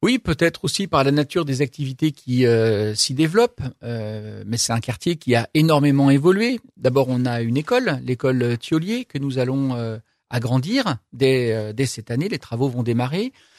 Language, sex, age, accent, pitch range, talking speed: French, male, 50-69, French, 125-160 Hz, 180 wpm